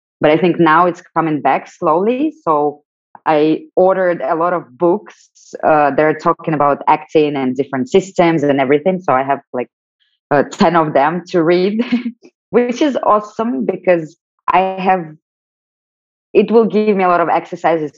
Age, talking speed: 20-39, 165 wpm